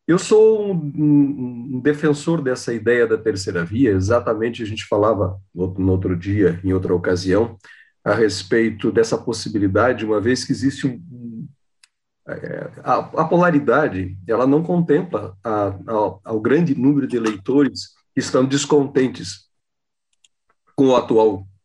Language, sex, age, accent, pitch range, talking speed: Portuguese, male, 40-59, Brazilian, 100-150 Hz, 130 wpm